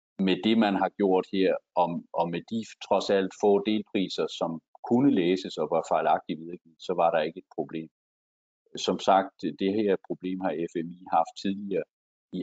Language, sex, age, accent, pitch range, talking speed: Danish, male, 50-69, native, 85-105 Hz, 175 wpm